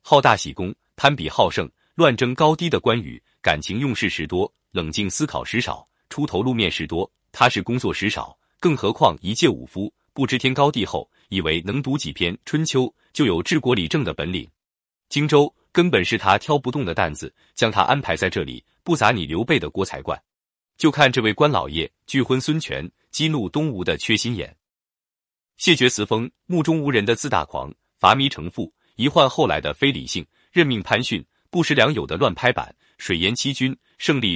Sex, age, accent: male, 30-49, native